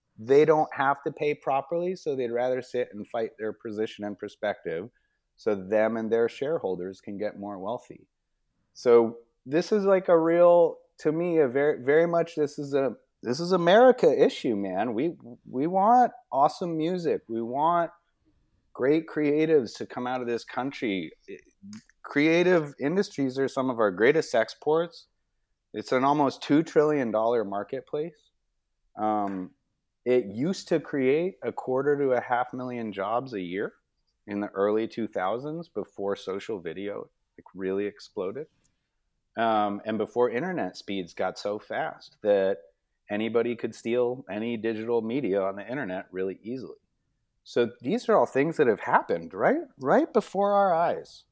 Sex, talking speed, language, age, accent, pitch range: male, 155 wpm, English, 30-49, American, 110-165 Hz